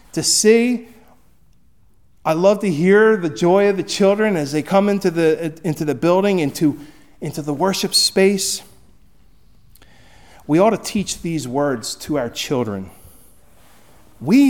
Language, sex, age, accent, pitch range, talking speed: English, male, 40-59, American, 160-220 Hz, 140 wpm